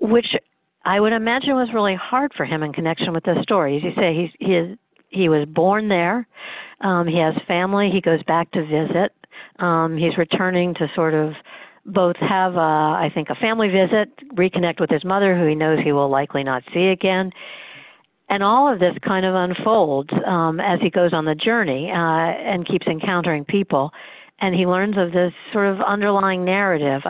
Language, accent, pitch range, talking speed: English, American, 170-220 Hz, 195 wpm